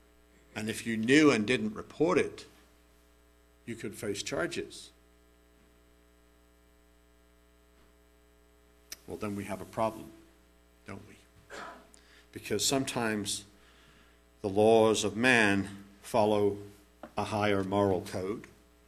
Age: 60-79